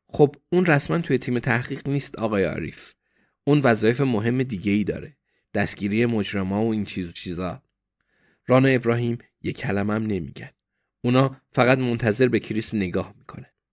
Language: Persian